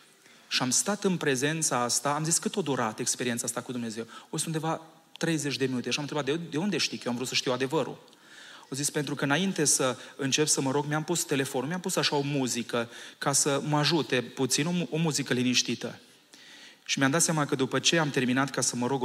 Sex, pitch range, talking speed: male, 125-150 Hz, 235 wpm